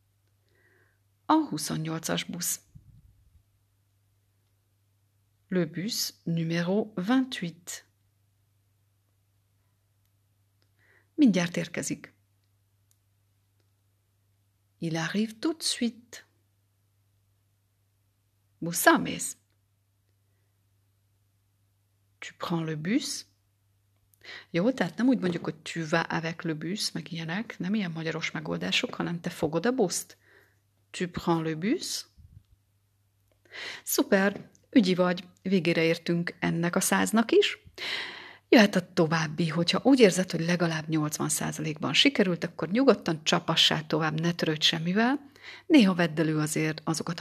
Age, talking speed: 40-59, 95 wpm